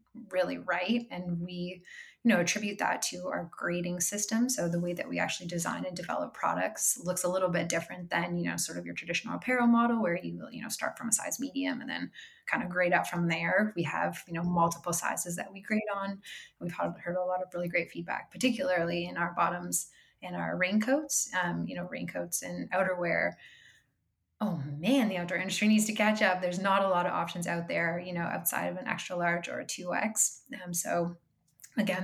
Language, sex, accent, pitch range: English, female, American, 170-210 Hz